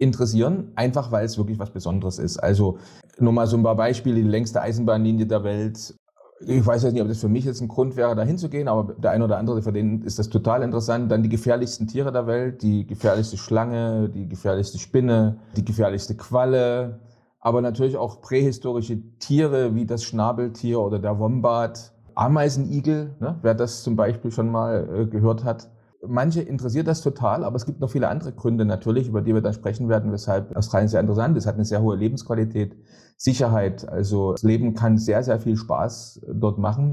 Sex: male